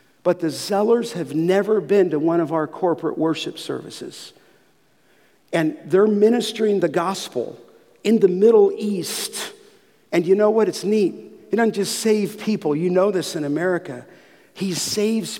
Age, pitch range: 50-69, 170-205 Hz